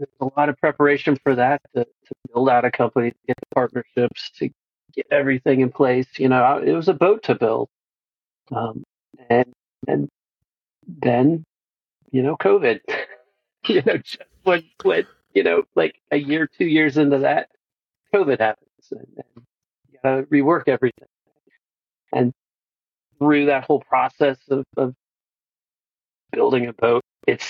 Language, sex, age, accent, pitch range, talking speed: English, male, 40-59, American, 125-145 Hz, 155 wpm